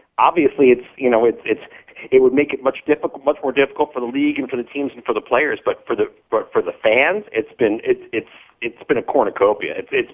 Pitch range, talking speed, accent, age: 105-140 Hz, 255 wpm, American, 40-59